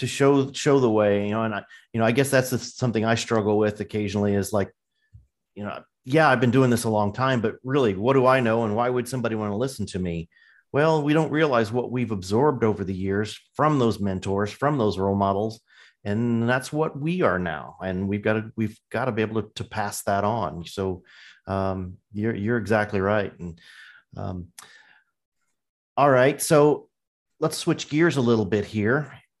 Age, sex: 40-59, male